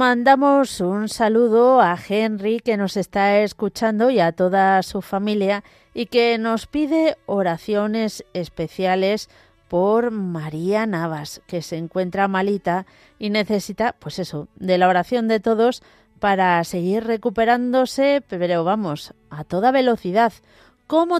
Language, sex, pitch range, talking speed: Spanish, female, 175-230 Hz, 125 wpm